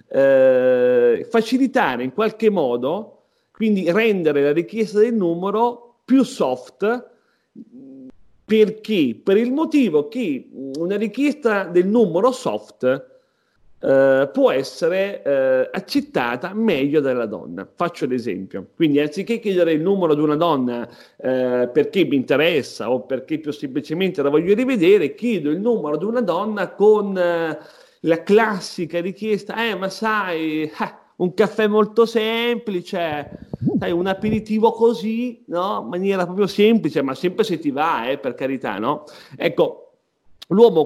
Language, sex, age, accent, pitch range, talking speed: Italian, male, 40-59, native, 150-230 Hz, 125 wpm